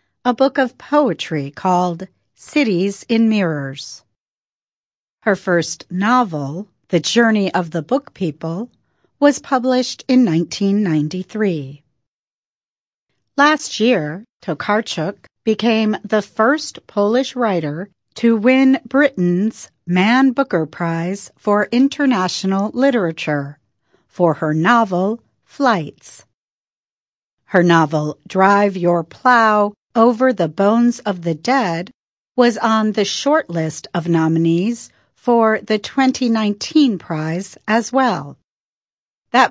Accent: American